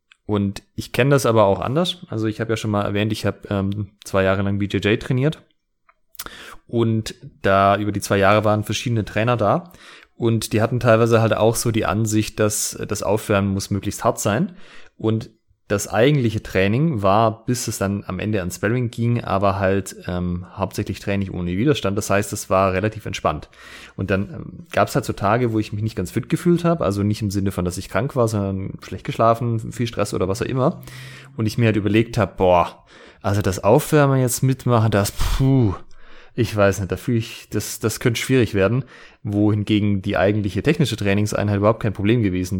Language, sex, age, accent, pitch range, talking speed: German, male, 30-49, German, 100-115 Hz, 200 wpm